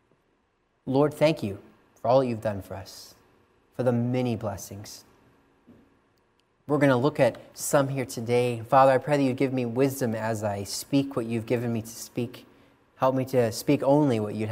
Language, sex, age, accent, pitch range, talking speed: English, male, 30-49, American, 115-155 Hz, 185 wpm